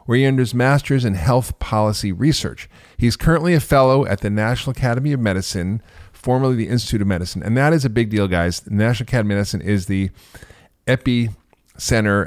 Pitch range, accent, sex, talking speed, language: 100-135 Hz, American, male, 180 wpm, English